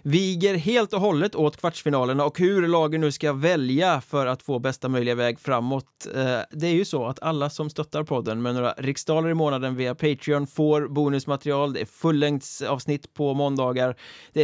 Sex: male